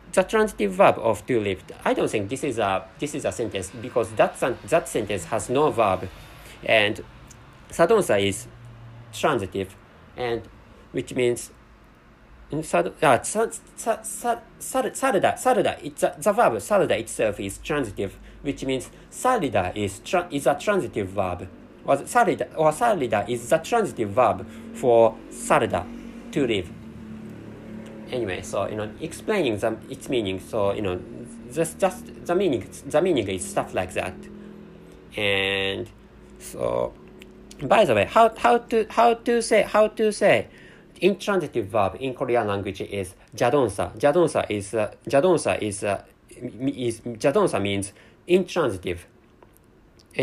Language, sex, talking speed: English, male, 125 wpm